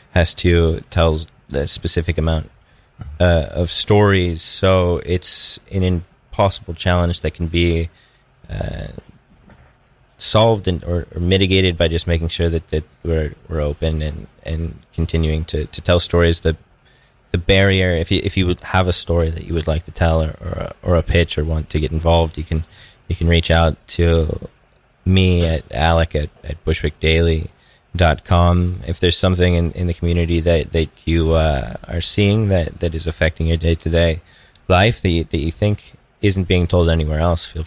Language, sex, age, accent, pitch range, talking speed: English, male, 20-39, American, 80-90 Hz, 185 wpm